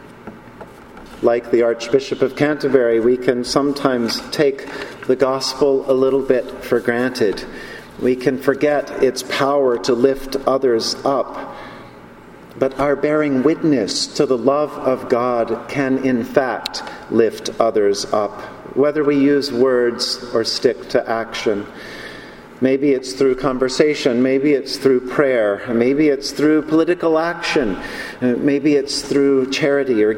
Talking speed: 130 wpm